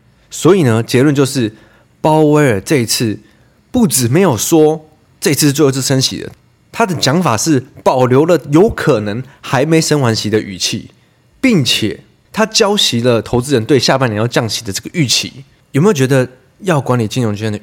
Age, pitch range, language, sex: 20-39, 110-150 Hz, Chinese, male